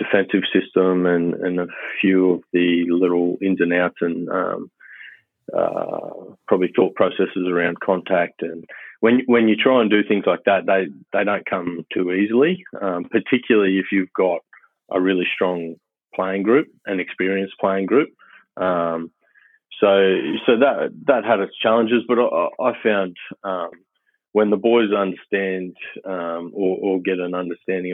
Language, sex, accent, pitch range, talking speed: English, male, Australian, 90-100 Hz, 155 wpm